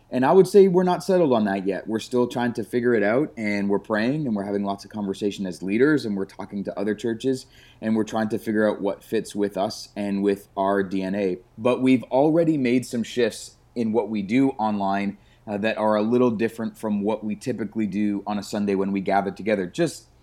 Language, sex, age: English, male, 30-49